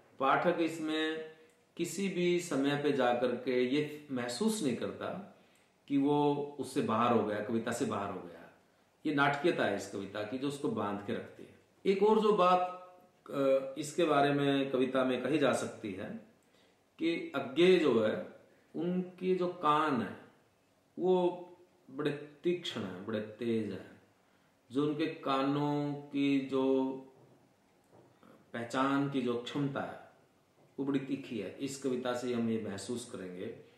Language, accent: Hindi, native